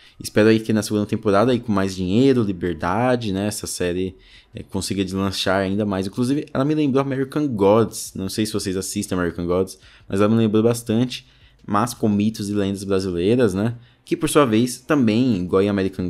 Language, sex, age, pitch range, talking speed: Portuguese, male, 20-39, 95-115 Hz, 195 wpm